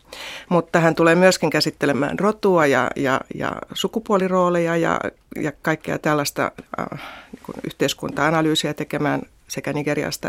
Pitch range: 150-185 Hz